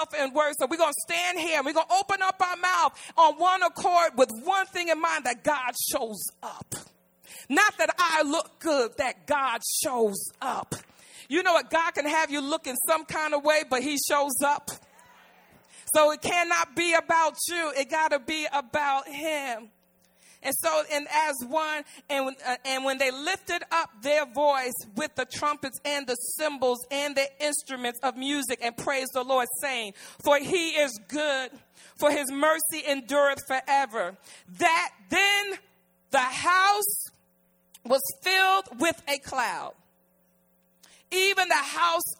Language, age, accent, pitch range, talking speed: English, 40-59, American, 255-335 Hz, 165 wpm